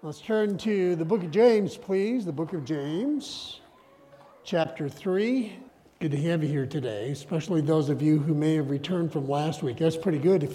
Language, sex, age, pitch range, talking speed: English, male, 60-79, 135-175 Hz, 200 wpm